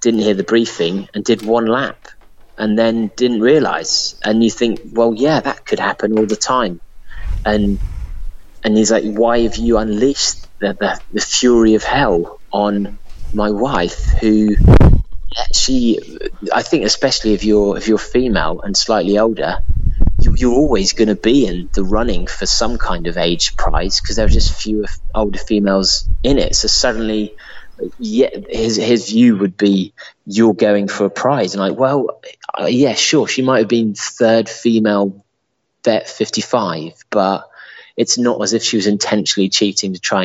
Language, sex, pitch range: English, male, 100-115 Hz